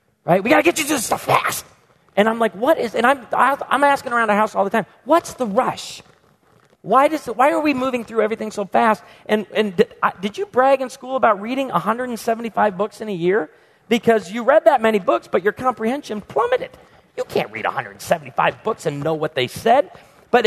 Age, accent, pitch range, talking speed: 40-59, American, 185-255 Hz, 225 wpm